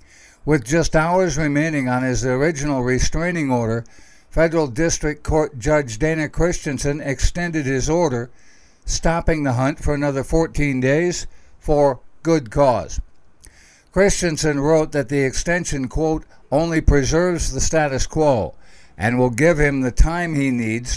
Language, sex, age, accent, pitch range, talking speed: English, male, 60-79, American, 125-155 Hz, 135 wpm